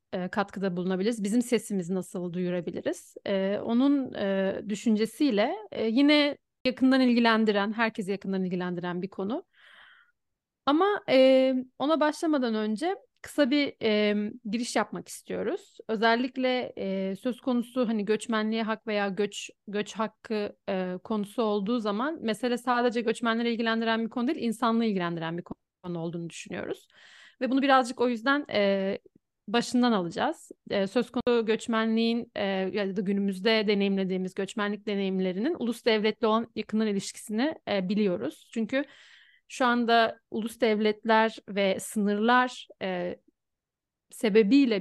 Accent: native